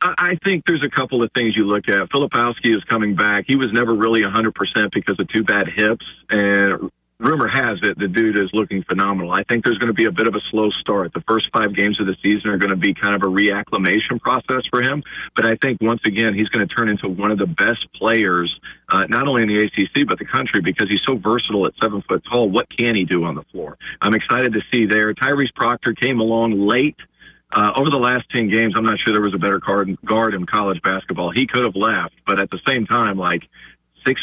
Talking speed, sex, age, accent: 245 wpm, male, 40-59, American